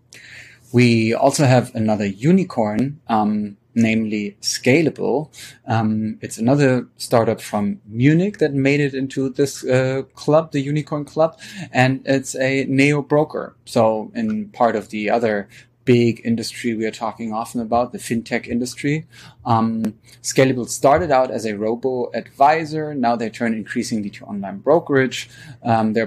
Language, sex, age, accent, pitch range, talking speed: English, male, 20-39, German, 110-130 Hz, 140 wpm